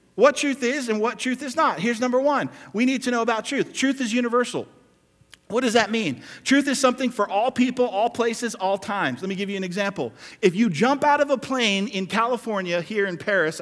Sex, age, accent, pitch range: male, 40-59, American, 165-235 Hz